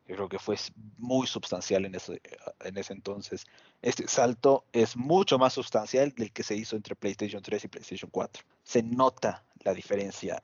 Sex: male